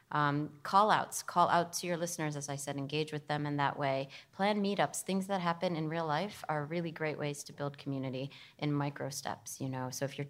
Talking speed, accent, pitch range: 235 wpm, American, 140-160 Hz